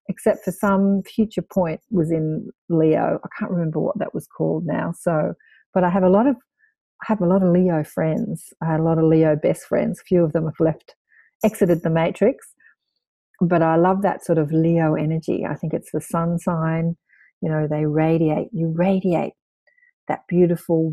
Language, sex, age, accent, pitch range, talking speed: English, female, 40-59, Australian, 160-195 Hz, 200 wpm